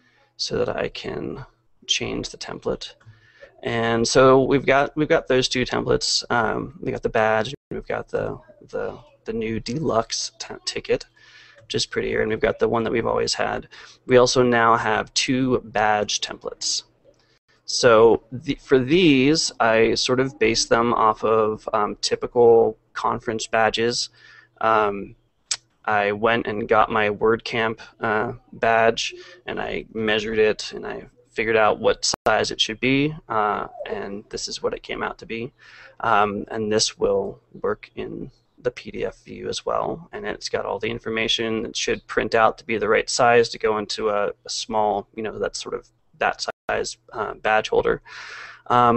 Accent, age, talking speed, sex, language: American, 20-39, 170 wpm, male, English